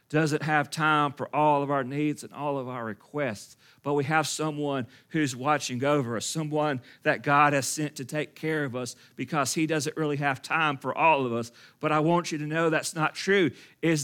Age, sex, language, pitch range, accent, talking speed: 40-59, male, English, 140-190 Hz, American, 220 wpm